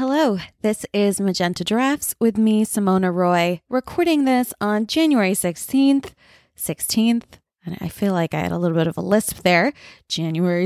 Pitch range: 180-235 Hz